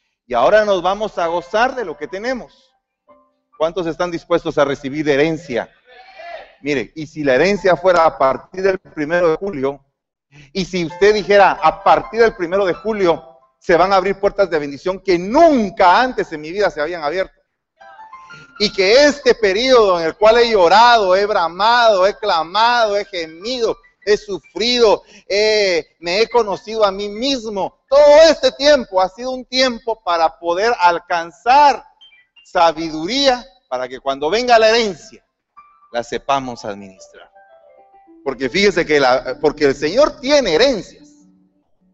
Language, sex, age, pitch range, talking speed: Spanish, male, 40-59, 160-255 Hz, 150 wpm